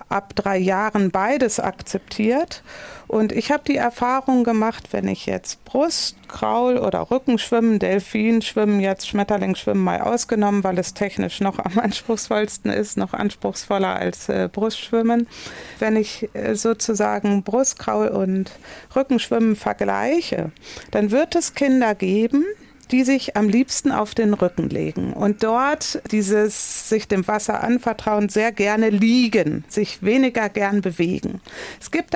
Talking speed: 130 wpm